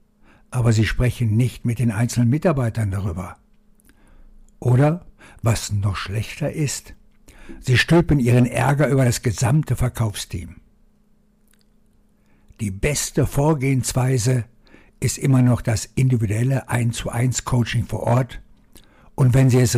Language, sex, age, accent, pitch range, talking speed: German, male, 60-79, German, 115-150 Hz, 120 wpm